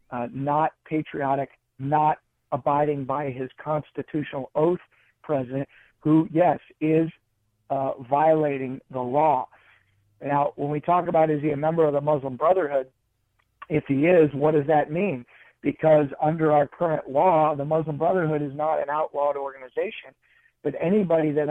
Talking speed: 150 wpm